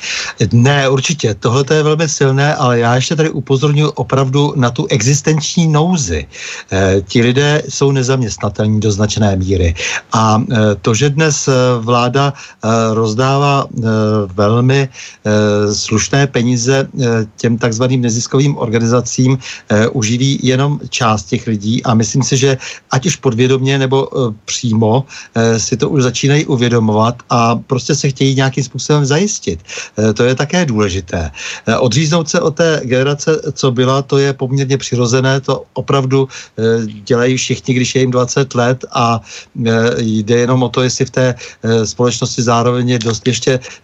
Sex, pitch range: male, 115-135 Hz